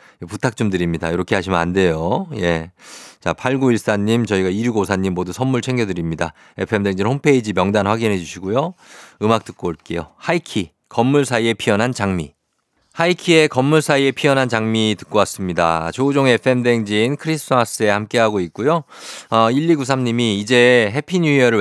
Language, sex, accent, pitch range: Korean, male, native, 95-125 Hz